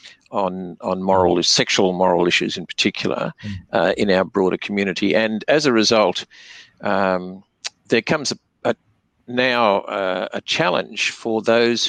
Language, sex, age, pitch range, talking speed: English, male, 50-69, 95-110 Hz, 140 wpm